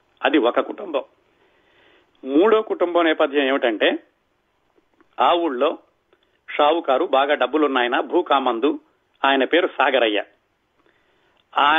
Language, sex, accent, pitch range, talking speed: Telugu, male, native, 140-180 Hz, 90 wpm